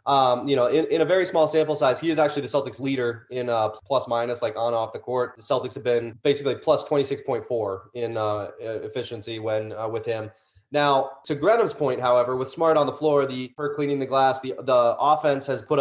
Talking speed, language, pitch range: 225 wpm, English, 120-140 Hz